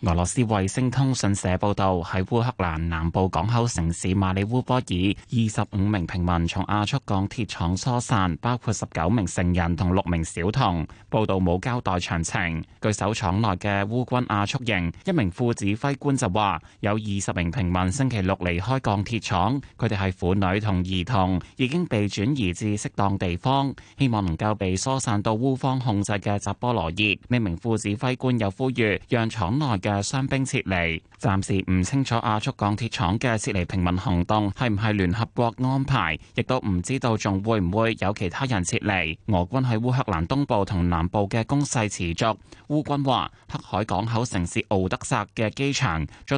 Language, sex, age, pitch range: Chinese, male, 20-39, 95-125 Hz